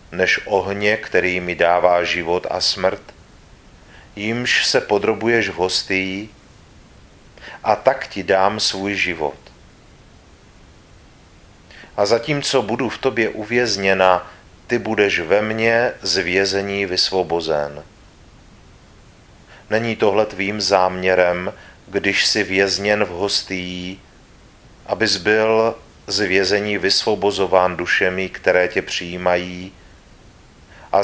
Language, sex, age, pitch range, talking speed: Czech, male, 40-59, 90-105 Hz, 95 wpm